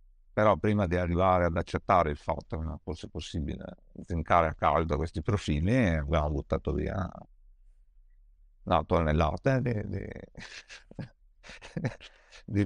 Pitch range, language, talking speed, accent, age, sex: 80-100 Hz, Italian, 105 wpm, native, 60-79, male